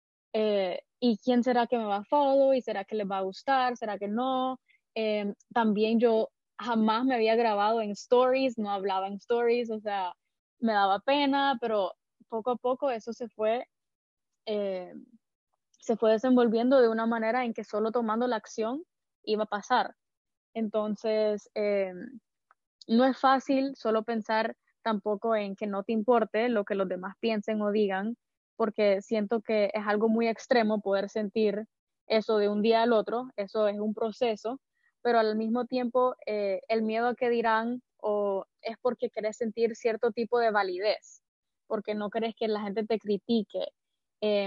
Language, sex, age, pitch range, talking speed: English, female, 10-29, 210-240 Hz, 170 wpm